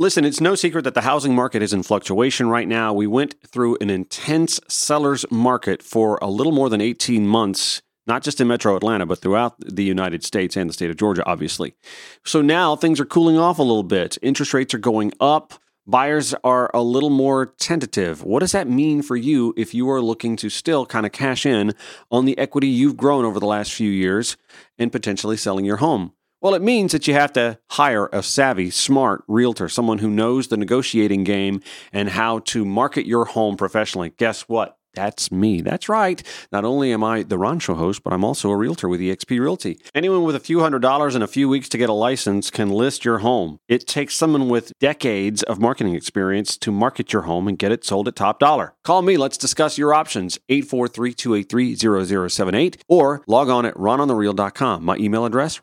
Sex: male